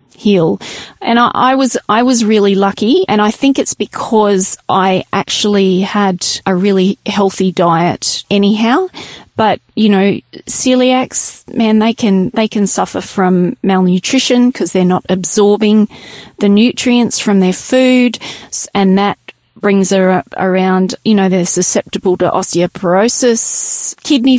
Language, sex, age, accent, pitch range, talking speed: English, female, 30-49, Australian, 185-225 Hz, 140 wpm